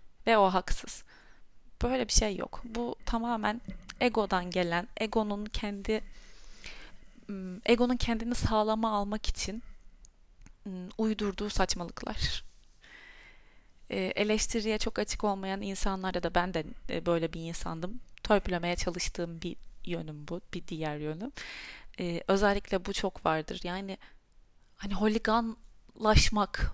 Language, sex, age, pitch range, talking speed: Turkish, female, 30-49, 180-220 Hz, 105 wpm